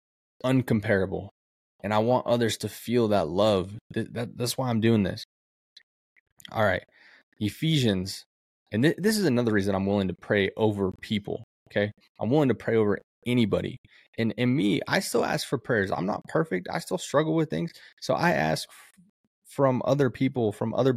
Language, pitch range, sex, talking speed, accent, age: English, 95-120 Hz, male, 175 wpm, American, 20-39